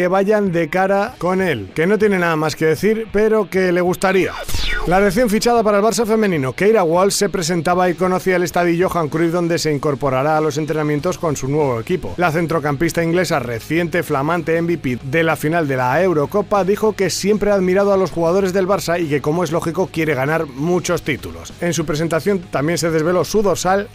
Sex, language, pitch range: male, Spanish, 155-195 Hz